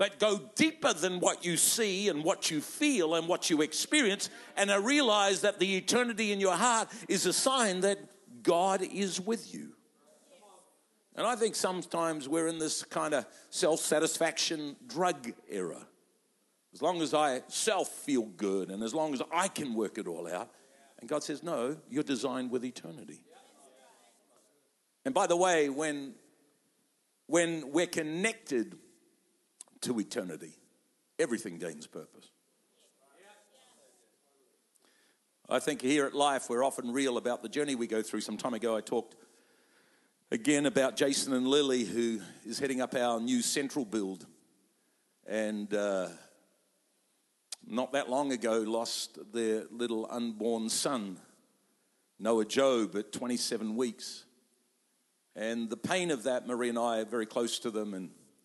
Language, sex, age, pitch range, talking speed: English, male, 50-69, 120-185 Hz, 145 wpm